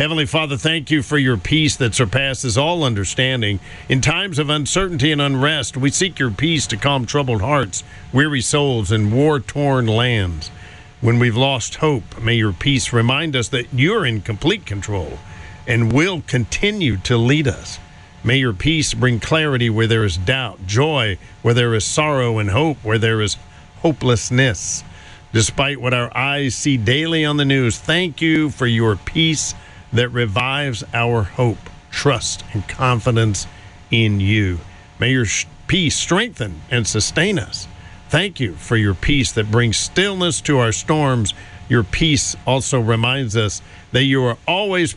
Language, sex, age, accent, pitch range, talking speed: English, male, 50-69, American, 105-145 Hz, 160 wpm